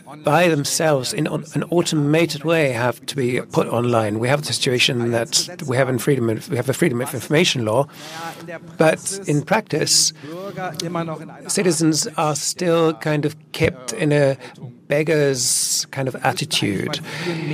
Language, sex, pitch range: German, male, 135-160 Hz